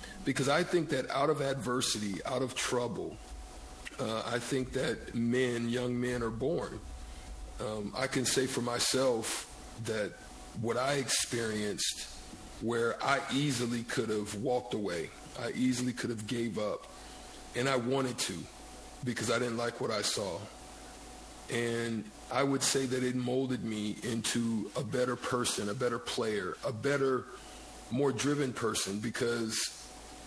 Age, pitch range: 50-69, 115-135 Hz